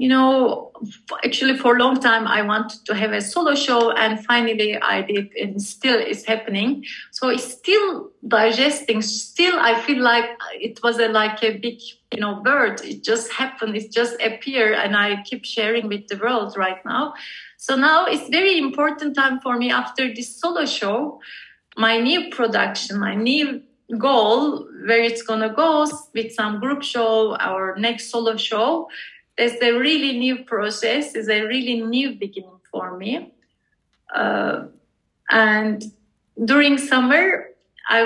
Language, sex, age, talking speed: English, female, 30-49, 160 wpm